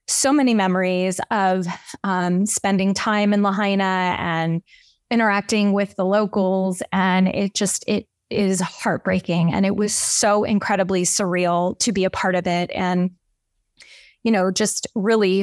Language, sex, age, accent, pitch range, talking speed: English, female, 20-39, American, 180-210 Hz, 145 wpm